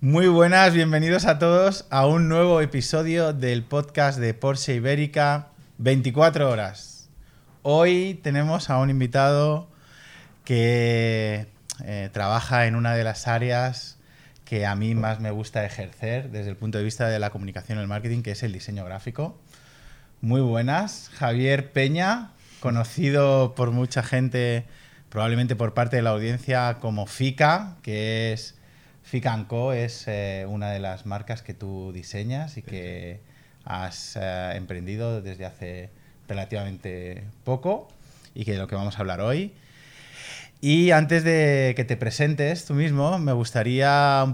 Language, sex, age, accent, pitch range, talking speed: Spanish, male, 20-39, Spanish, 110-140 Hz, 145 wpm